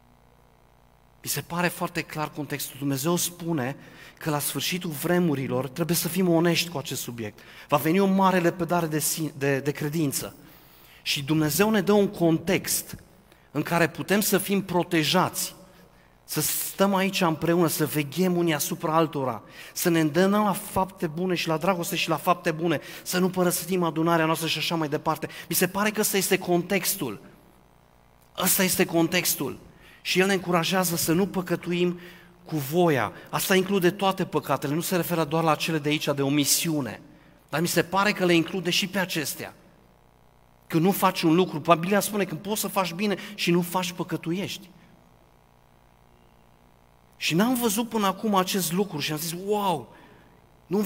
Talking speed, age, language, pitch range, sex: 170 wpm, 30-49, Romanian, 145-185 Hz, male